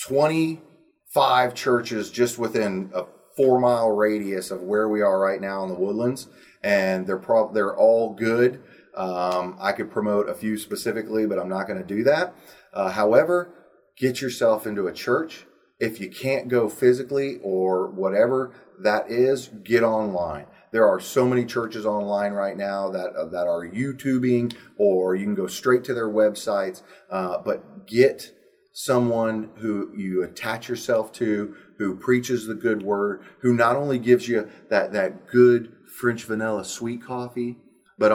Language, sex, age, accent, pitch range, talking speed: English, male, 30-49, American, 105-125 Hz, 160 wpm